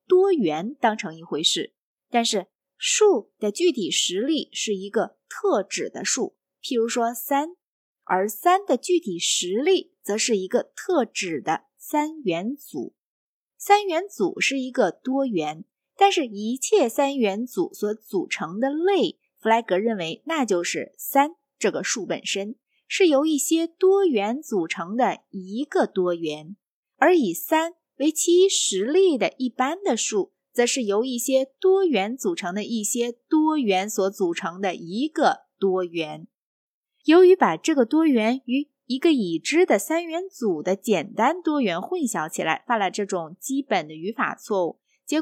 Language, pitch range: Chinese, 200-320 Hz